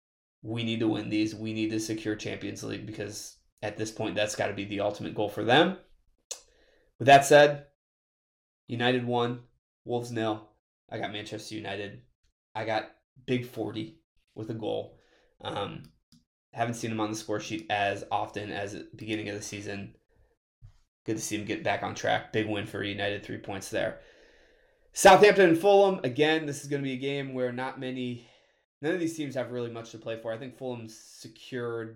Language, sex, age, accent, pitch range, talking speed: English, male, 20-39, American, 105-120 Hz, 190 wpm